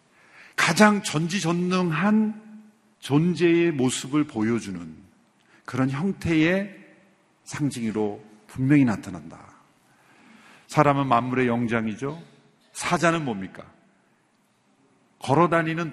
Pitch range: 120-170 Hz